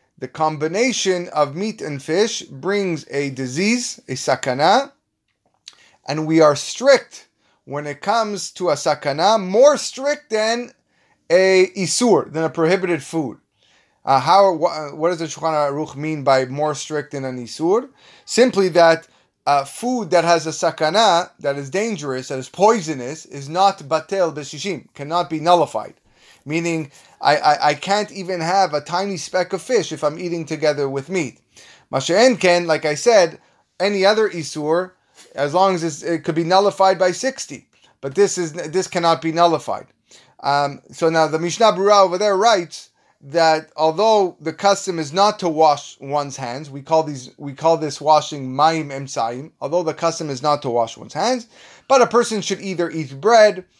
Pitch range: 150-195 Hz